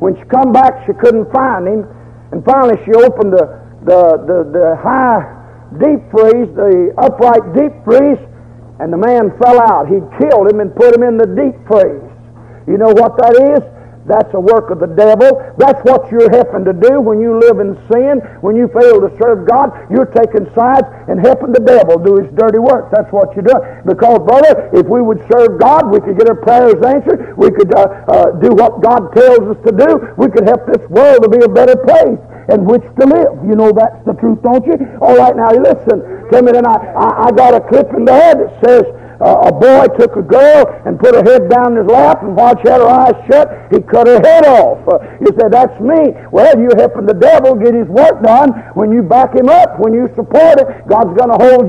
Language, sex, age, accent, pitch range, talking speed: English, male, 60-79, American, 215-265 Hz, 225 wpm